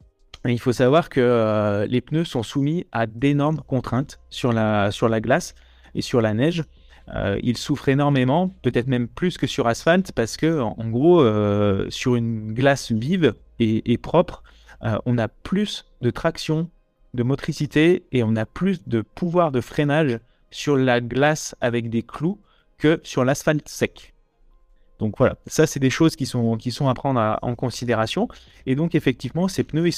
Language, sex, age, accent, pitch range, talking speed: French, male, 30-49, French, 110-145 Hz, 180 wpm